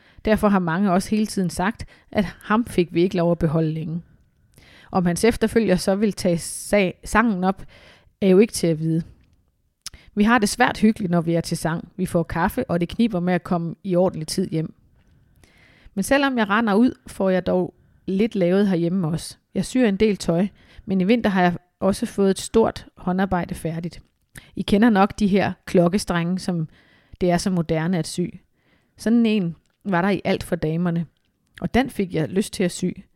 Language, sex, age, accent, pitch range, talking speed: Danish, female, 30-49, native, 175-210 Hz, 200 wpm